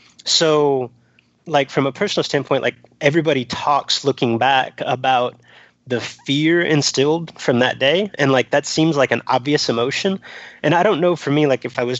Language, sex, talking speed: English, male, 180 wpm